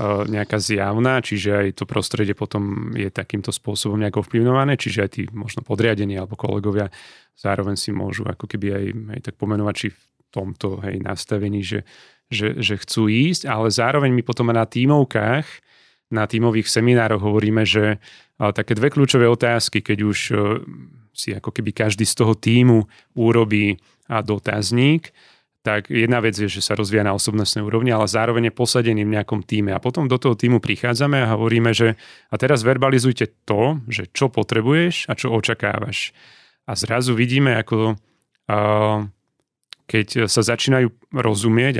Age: 30-49